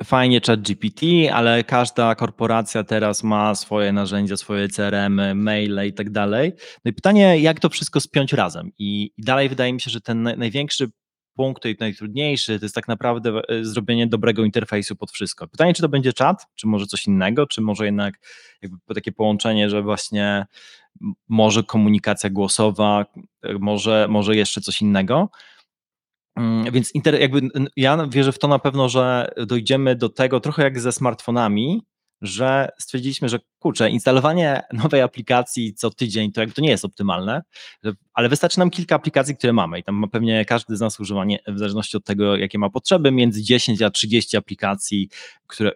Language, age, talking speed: Polish, 20-39, 165 wpm